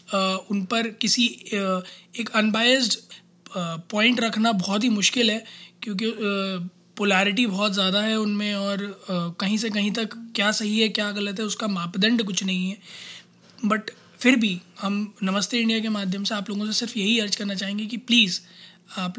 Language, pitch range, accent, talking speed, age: Hindi, 190-215 Hz, native, 165 wpm, 20-39